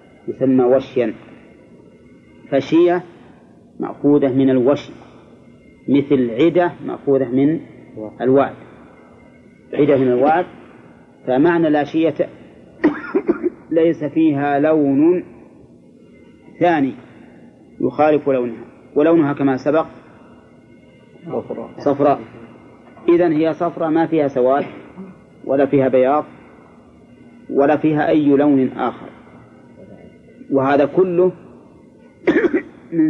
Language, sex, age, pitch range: Arabic, male, 30-49, 130-160 Hz